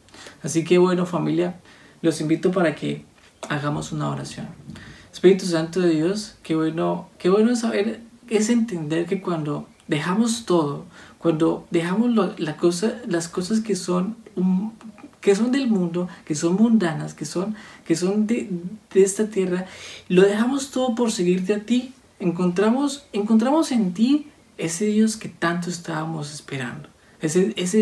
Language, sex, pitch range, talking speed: Spanish, male, 160-215 Hz, 135 wpm